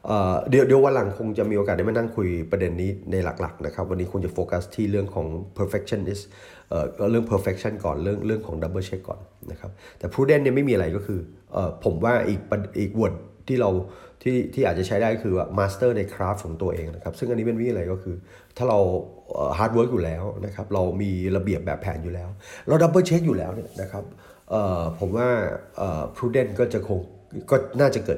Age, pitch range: 30-49, 90-110 Hz